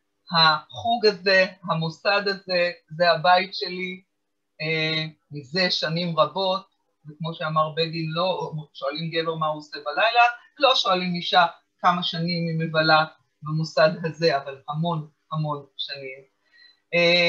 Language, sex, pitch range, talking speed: Hebrew, female, 155-190 Hz, 120 wpm